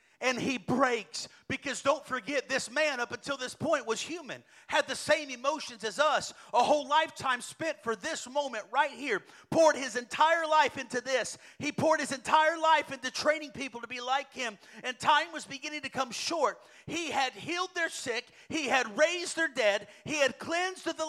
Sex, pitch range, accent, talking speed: male, 230-295 Hz, American, 195 wpm